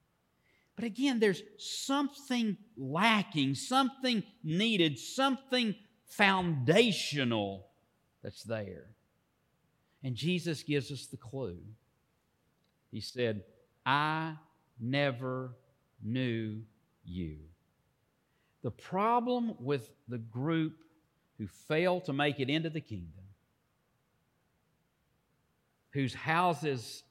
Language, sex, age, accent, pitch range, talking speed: English, male, 50-69, American, 105-155 Hz, 85 wpm